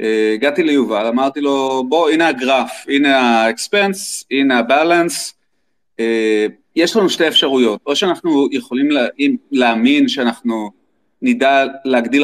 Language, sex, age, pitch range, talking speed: Hebrew, male, 30-49, 120-180 Hz, 125 wpm